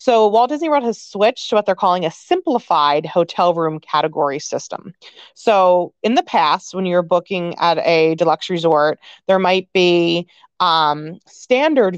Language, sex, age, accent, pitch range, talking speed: English, female, 30-49, American, 165-210 Hz, 160 wpm